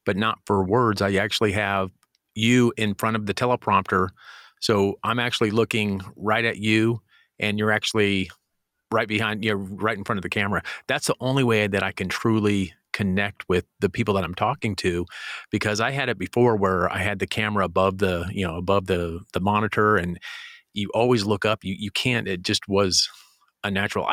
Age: 40-59